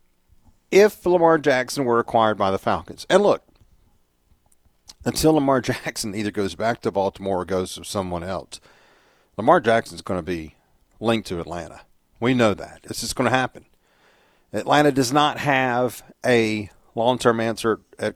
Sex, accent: male, American